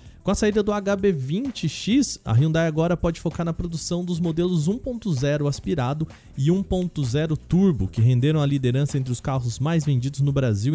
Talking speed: 165 wpm